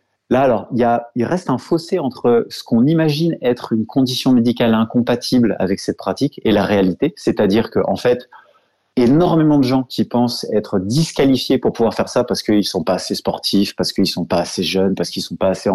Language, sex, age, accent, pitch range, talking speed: French, male, 30-49, French, 100-135 Hz, 225 wpm